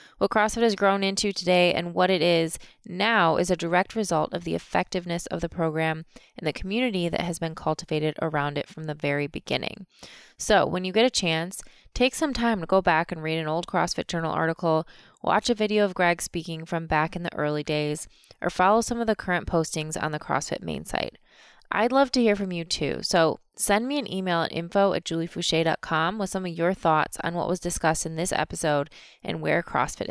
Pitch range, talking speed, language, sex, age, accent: 165-225 Hz, 215 wpm, English, female, 20-39, American